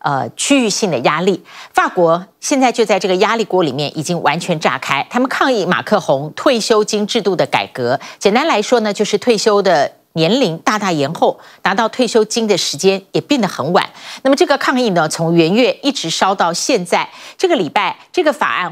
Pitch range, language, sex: 175-250 Hz, Chinese, female